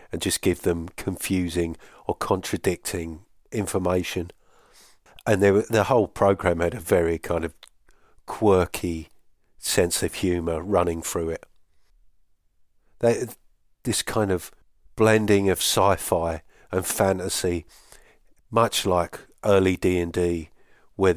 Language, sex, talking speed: English, male, 105 wpm